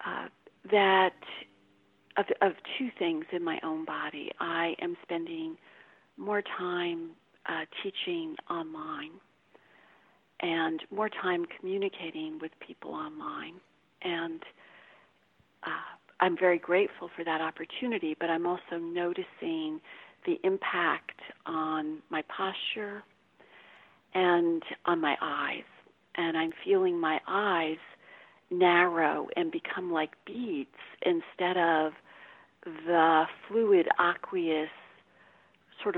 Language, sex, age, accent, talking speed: English, female, 50-69, American, 105 wpm